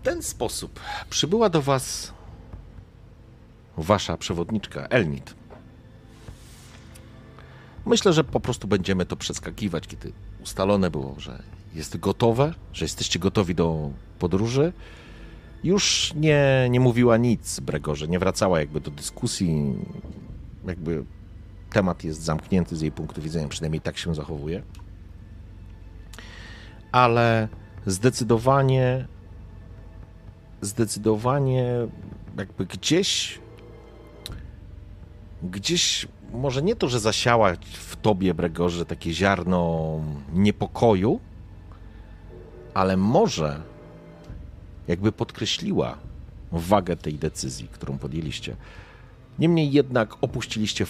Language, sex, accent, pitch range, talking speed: Polish, male, native, 85-110 Hz, 95 wpm